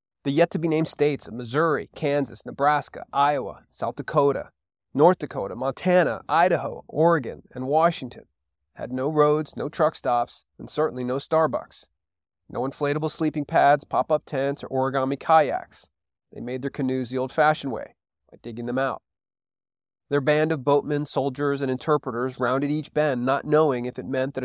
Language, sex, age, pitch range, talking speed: English, male, 30-49, 130-155 Hz, 155 wpm